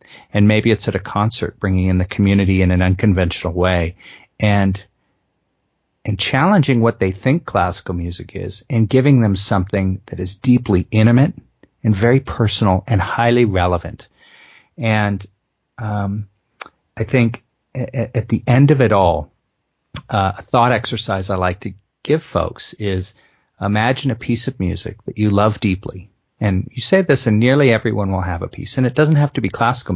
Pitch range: 95-125 Hz